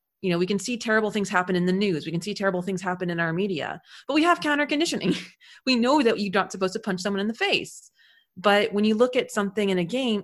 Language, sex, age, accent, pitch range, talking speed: English, female, 30-49, American, 185-235 Hz, 270 wpm